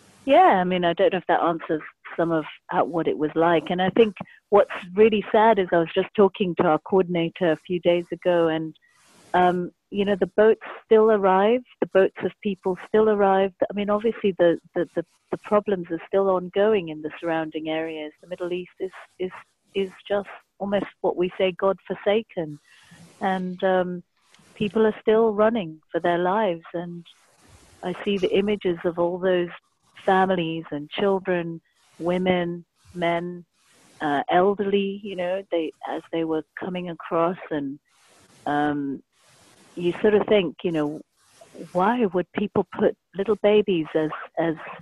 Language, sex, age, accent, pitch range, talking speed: English, female, 40-59, British, 165-200 Hz, 165 wpm